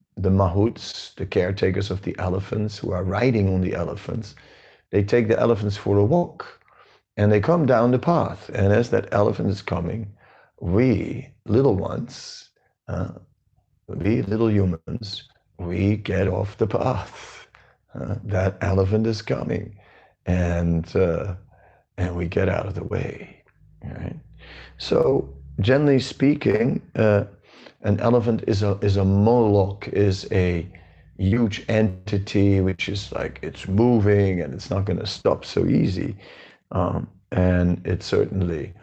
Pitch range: 95-110 Hz